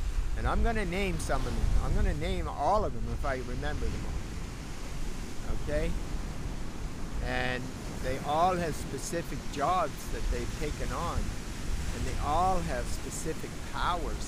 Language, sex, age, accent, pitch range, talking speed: English, male, 50-69, American, 75-105 Hz, 155 wpm